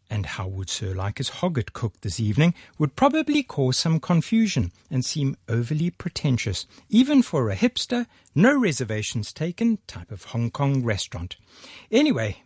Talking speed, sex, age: 145 wpm, male, 60-79